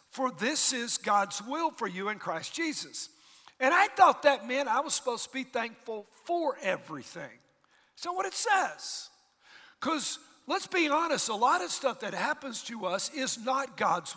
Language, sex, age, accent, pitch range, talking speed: English, male, 50-69, American, 235-305 Hz, 180 wpm